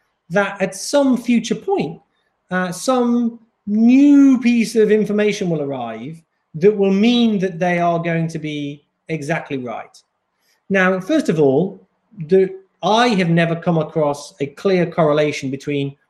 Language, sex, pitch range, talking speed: Hungarian, male, 145-220 Hz, 140 wpm